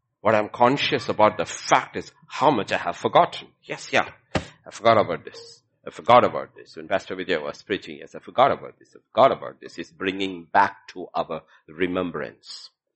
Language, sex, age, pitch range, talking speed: English, male, 50-69, 95-120 Hz, 200 wpm